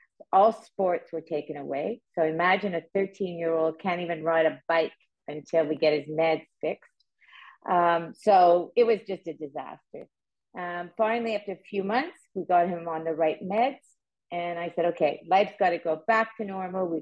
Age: 50-69